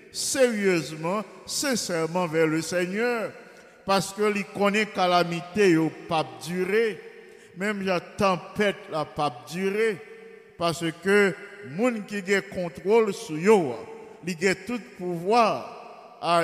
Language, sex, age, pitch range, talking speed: English, male, 50-69, 170-210 Hz, 105 wpm